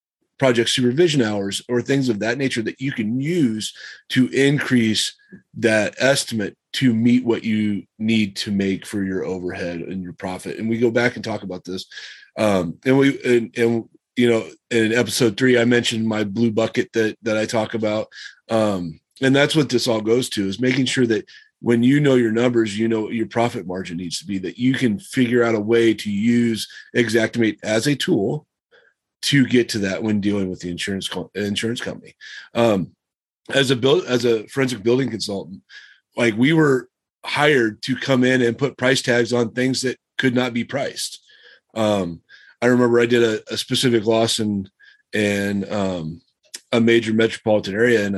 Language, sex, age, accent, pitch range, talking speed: English, male, 30-49, American, 105-125 Hz, 190 wpm